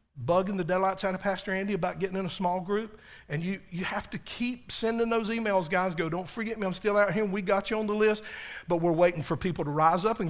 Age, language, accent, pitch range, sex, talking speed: 50-69, English, American, 175-220 Hz, male, 275 wpm